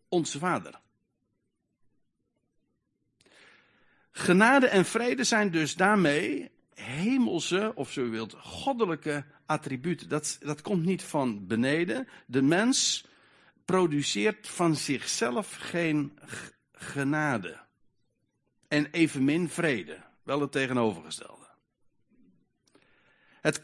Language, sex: Dutch, male